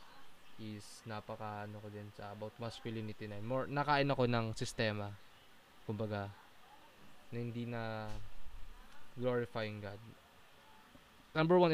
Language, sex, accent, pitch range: Filipino, male, native, 105-125 Hz